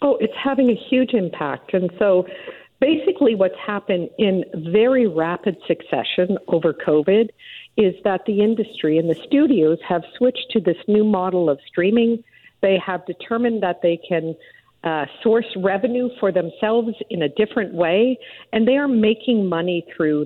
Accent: American